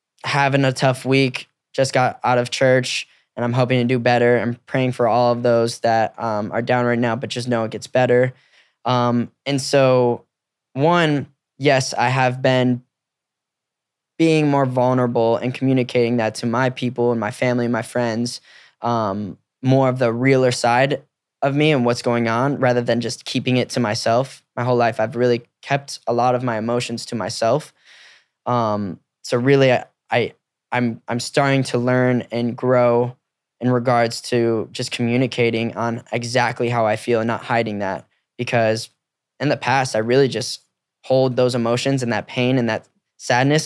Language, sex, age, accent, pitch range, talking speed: English, male, 10-29, American, 120-130 Hz, 180 wpm